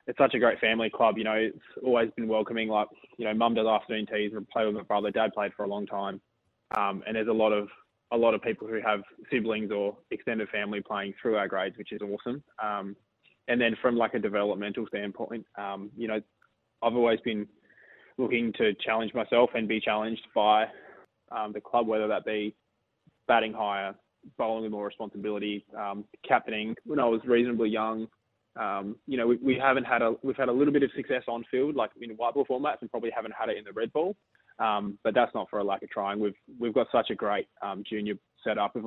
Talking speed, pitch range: 220 wpm, 105-115 Hz